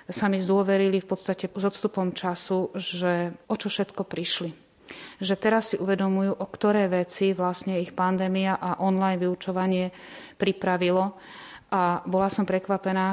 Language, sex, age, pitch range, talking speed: Slovak, female, 30-49, 180-195 Hz, 140 wpm